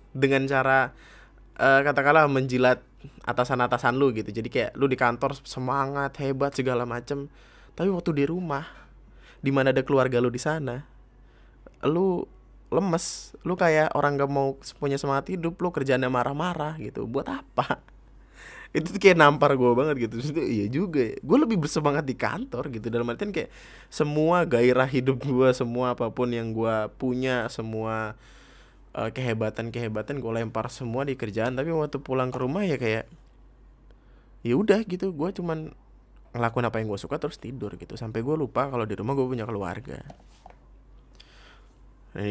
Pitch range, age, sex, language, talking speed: 115-140 Hz, 20-39, male, Indonesian, 155 wpm